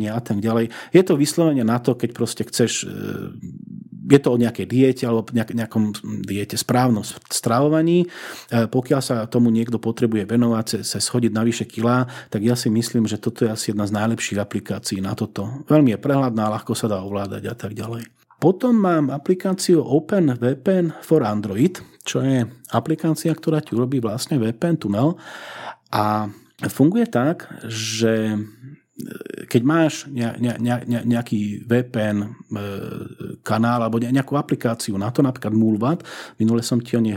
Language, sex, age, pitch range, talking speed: Slovak, male, 40-59, 110-135 Hz, 150 wpm